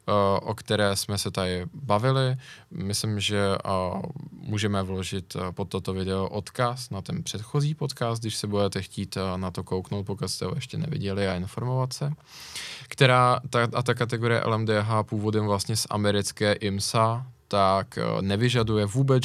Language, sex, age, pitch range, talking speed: Czech, male, 20-39, 100-125 Hz, 145 wpm